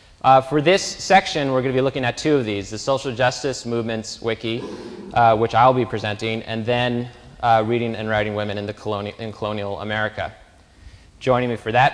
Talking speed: 190 wpm